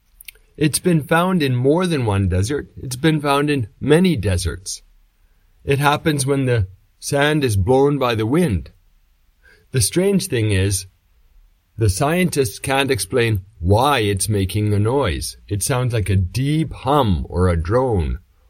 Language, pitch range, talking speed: English, 90-135 Hz, 150 wpm